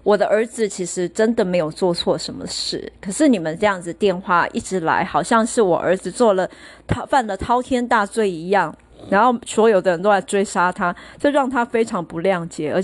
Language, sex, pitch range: Chinese, female, 175-210 Hz